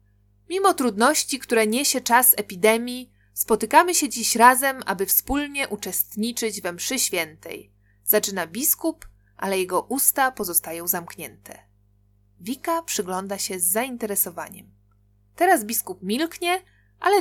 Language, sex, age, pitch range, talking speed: Polish, female, 20-39, 175-255 Hz, 110 wpm